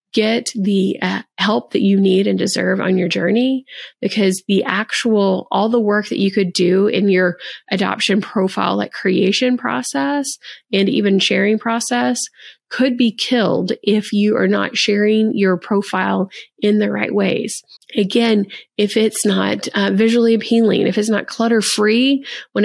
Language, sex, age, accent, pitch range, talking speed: English, female, 30-49, American, 195-230 Hz, 155 wpm